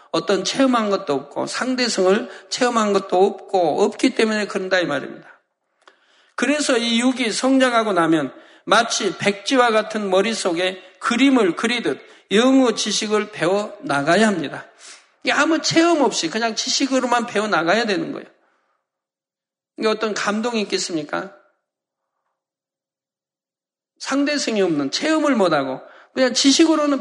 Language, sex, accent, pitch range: Korean, male, native, 195-255 Hz